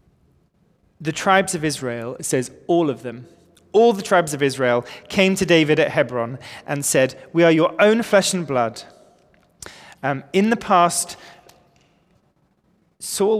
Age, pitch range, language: 30-49, 145-190 Hz, English